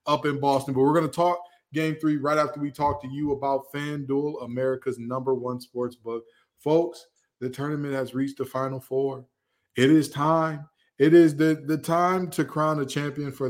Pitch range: 125-155 Hz